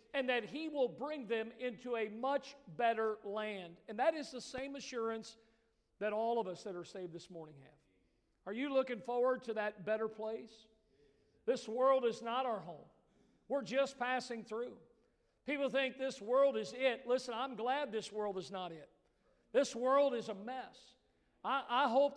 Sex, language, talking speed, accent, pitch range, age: male, English, 180 wpm, American, 230-270 Hz, 50-69